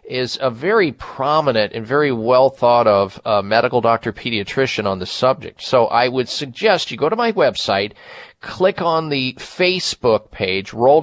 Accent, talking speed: American, 170 wpm